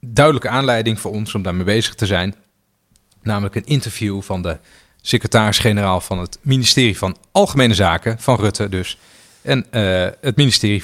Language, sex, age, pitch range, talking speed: Dutch, male, 40-59, 95-120 Hz, 155 wpm